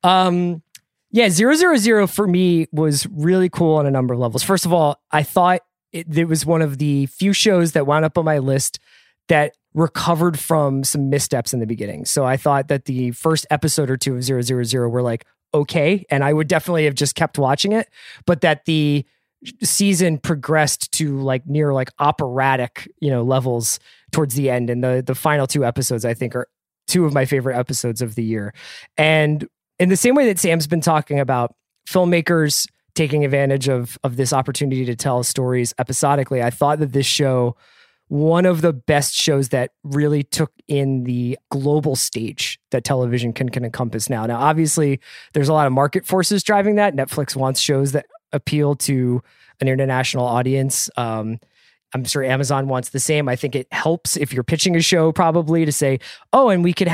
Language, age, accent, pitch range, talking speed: English, 20-39, American, 130-165 Hz, 190 wpm